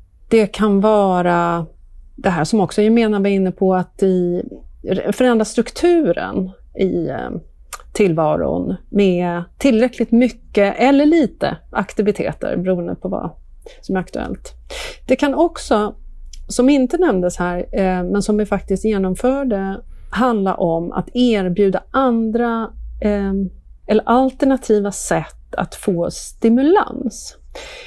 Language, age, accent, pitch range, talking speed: Swedish, 40-59, native, 185-240 Hz, 110 wpm